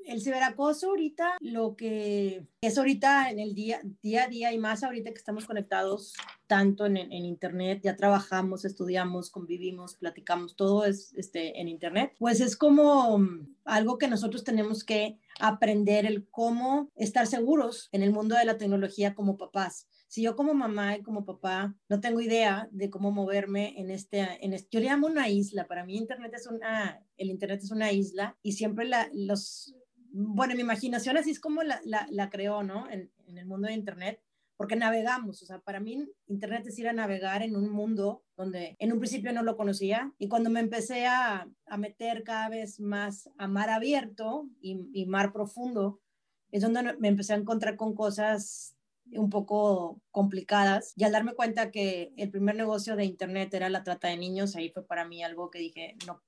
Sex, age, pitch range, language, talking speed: female, 30-49, 195-230 Hz, Spanish, 190 wpm